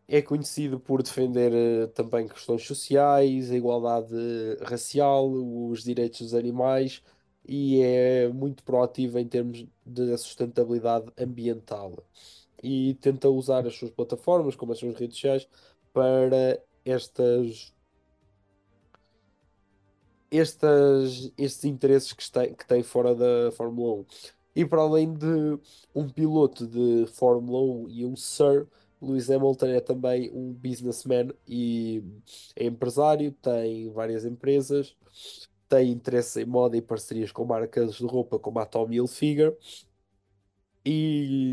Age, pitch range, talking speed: 20-39, 115-135 Hz, 125 wpm